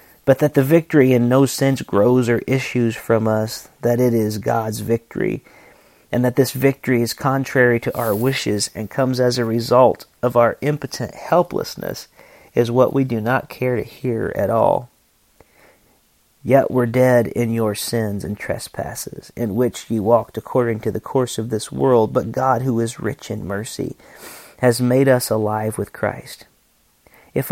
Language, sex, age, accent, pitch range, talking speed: English, male, 40-59, American, 115-135 Hz, 170 wpm